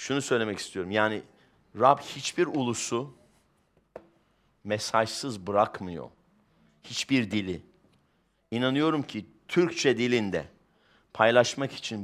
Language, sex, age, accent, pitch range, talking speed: English, male, 50-69, Turkish, 110-140 Hz, 85 wpm